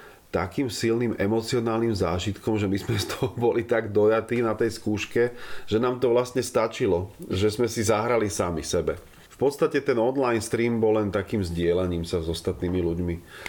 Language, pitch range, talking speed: Slovak, 90-105 Hz, 175 wpm